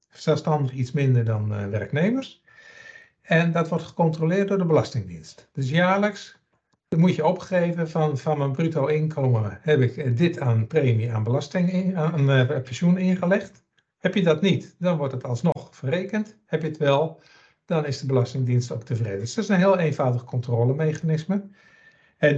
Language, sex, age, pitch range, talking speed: Dutch, male, 60-79, 125-175 Hz, 165 wpm